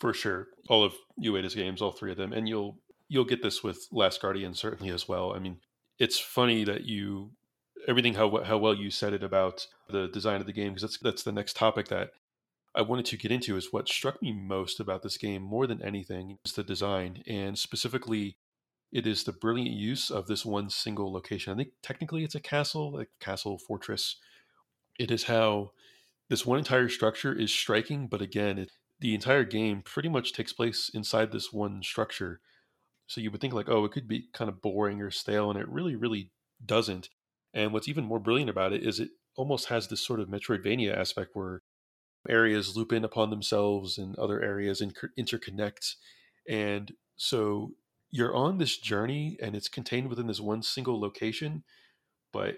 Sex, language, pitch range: male, English, 100-120 Hz